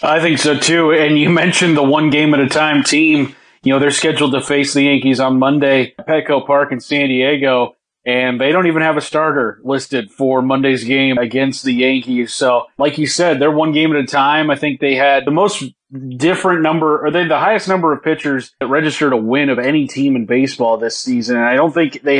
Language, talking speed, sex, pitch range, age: English, 220 wpm, male, 130-150 Hz, 30-49